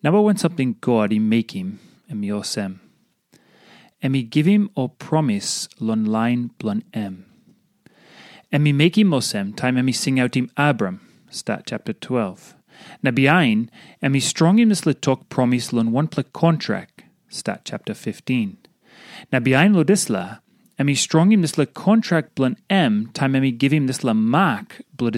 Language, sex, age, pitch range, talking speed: English, male, 30-49, 130-190 Hz, 175 wpm